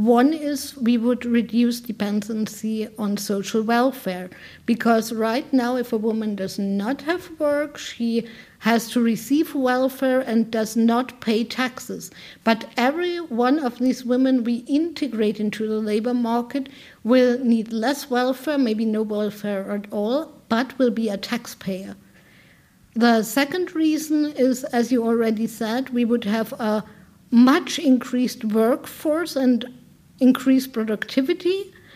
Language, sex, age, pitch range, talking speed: English, female, 50-69, 225-270 Hz, 135 wpm